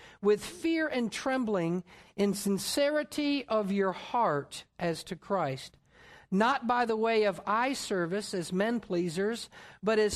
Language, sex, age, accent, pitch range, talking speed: English, male, 50-69, American, 180-230 Hz, 140 wpm